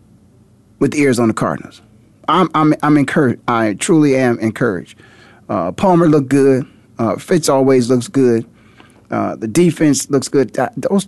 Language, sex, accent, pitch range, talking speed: English, male, American, 110-135 Hz, 155 wpm